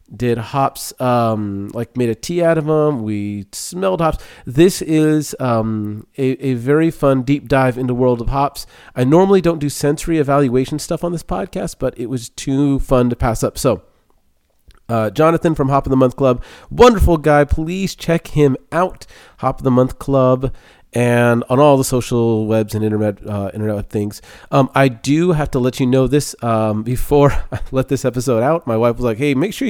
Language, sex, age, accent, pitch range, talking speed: English, male, 30-49, American, 115-145 Hz, 200 wpm